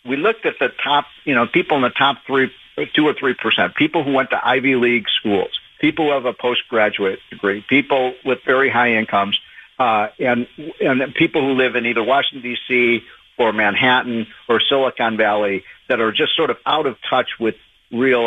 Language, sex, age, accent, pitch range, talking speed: English, male, 50-69, American, 110-135 Hz, 195 wpm